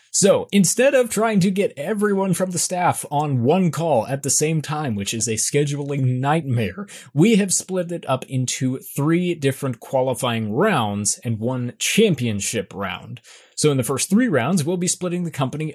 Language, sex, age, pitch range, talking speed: English, male, 20-39, 120-165 Hz, 180 wpm